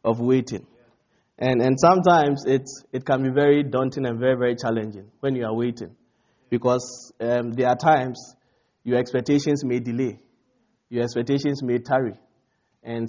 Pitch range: 120-135 Hz